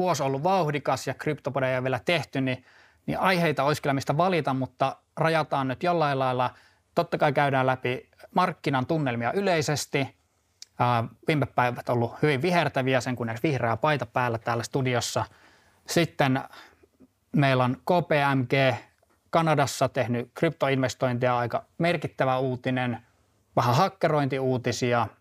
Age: 20-39